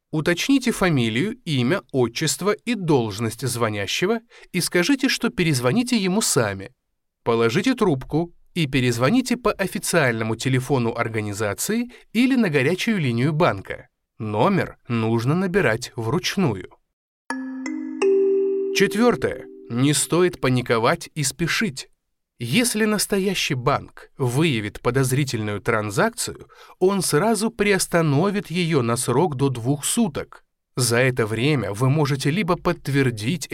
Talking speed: 105 wpm